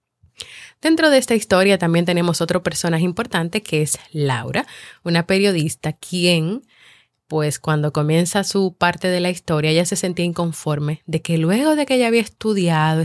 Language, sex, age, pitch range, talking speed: Spanish, female, 30-49, 155-195 Hz, 160 wpm